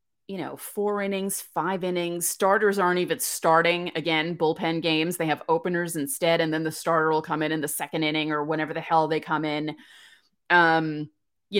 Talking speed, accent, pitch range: 190 wpm, American, 155-195 Hz